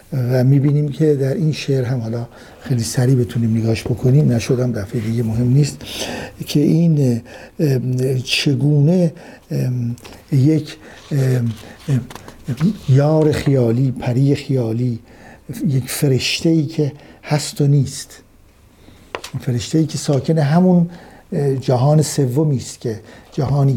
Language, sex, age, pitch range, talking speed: Persian, male, 60-79, 120-145 Hz, 100 wpm